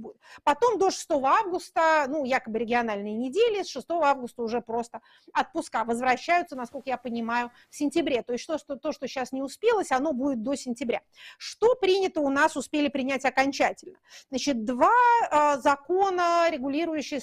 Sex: female